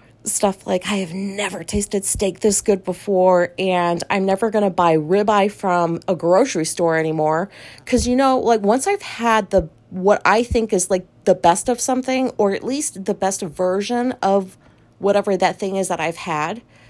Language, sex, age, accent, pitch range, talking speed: English, female, 30-49, American, 170-225 Hz, 185 wpm